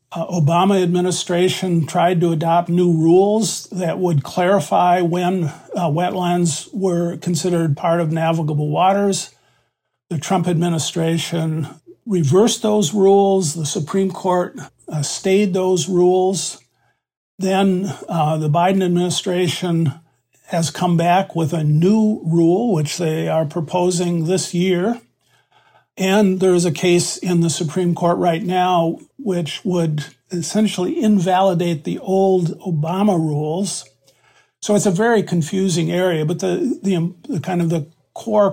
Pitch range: 160-185 Hz